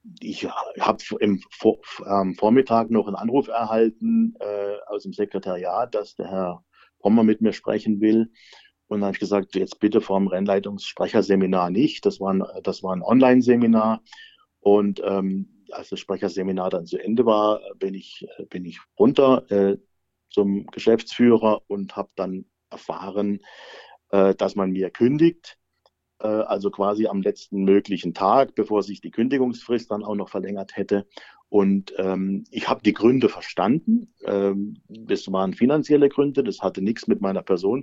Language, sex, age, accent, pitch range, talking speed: German, male, 50-69, German, 95-115 Hz, 150 wpm